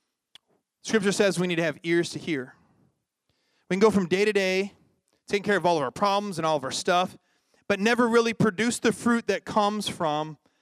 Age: 30-49